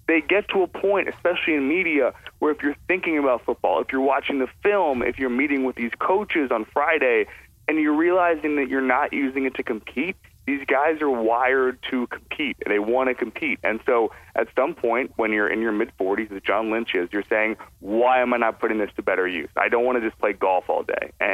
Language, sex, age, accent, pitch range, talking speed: English, male, 30-49, American, 105-140 Hz, 230 wpm